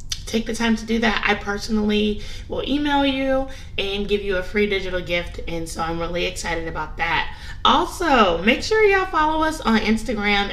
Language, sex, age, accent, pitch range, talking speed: English, female, 20-39, American, 185-225 Hz, 190 wpm